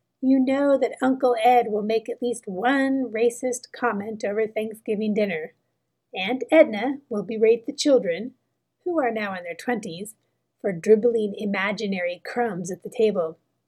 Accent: American